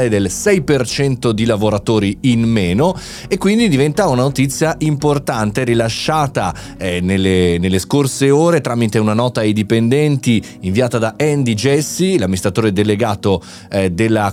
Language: Italian